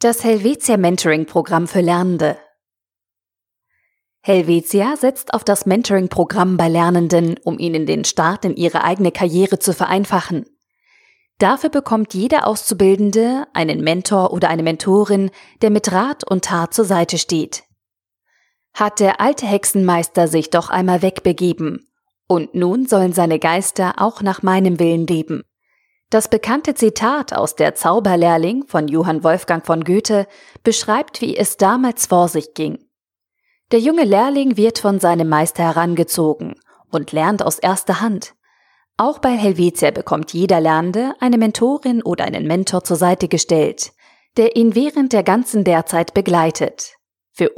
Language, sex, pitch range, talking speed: German, female, 170-225 Hz, 135 wpm